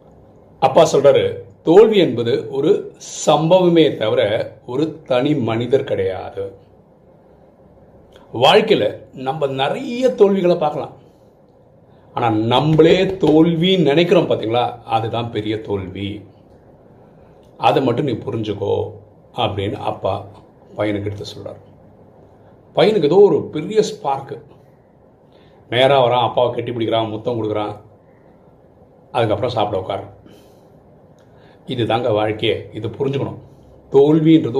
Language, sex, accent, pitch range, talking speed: Tamil, male, native, 105-165 Hz, 90 wpm